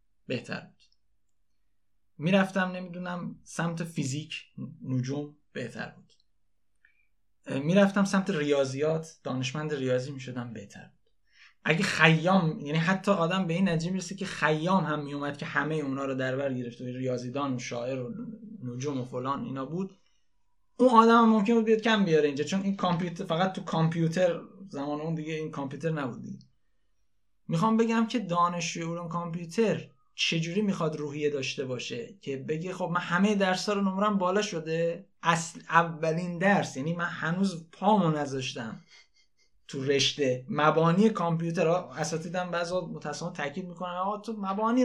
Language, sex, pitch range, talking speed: Persian, male, 140-190 Hz, 140 wpm